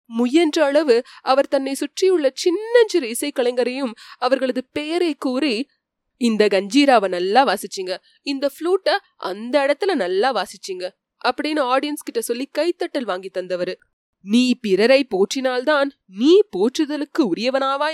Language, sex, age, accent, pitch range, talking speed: Tamil, female, 20-39, native, 205-300 Hz, 115 wpm